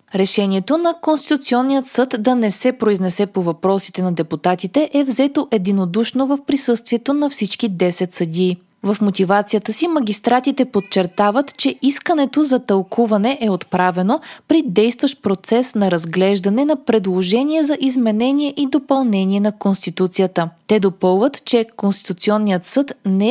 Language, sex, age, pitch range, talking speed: Bulgarian, female, 20-39, 190-275 Hz, 130 wpm